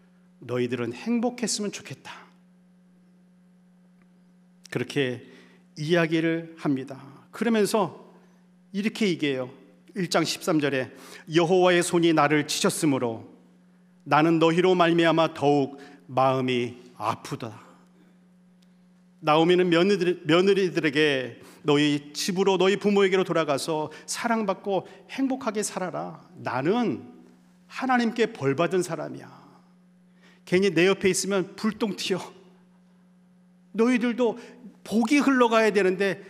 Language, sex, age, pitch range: Korean, male, 40-59, 150-190 Hz